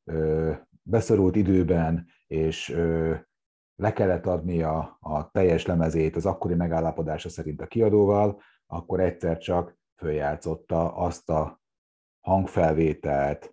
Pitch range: 80-95 Hz